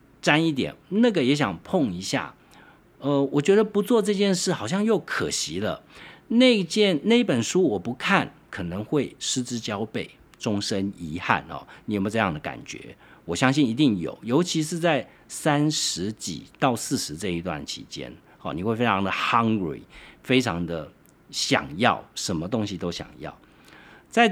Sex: male